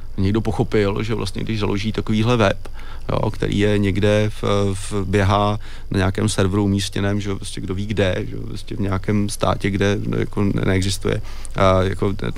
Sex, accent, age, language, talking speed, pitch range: male, native, 30-49, Czech, 175 wpm, 95-105 Hz